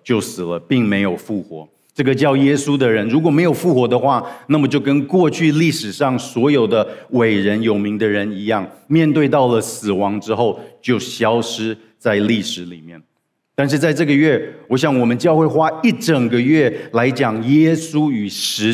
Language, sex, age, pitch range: Chinese, male, 50-69, 110-150 Hz